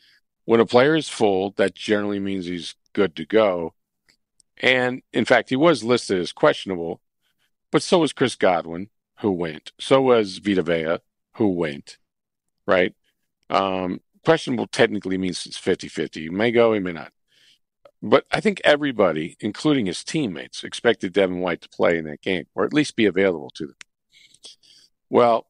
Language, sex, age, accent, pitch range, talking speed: English, male, 50-69, American, 95-120 Hz, 160 wpm